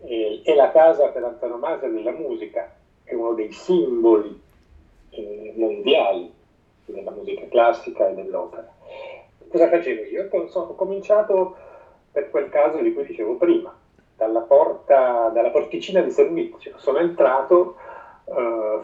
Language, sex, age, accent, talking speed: Italian, male, 40-59, native, 125 wpm